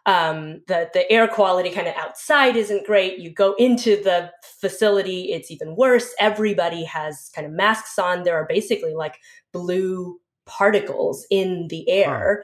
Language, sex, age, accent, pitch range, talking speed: English, female, 20-39, American, 175-225 Hz, 160 wpm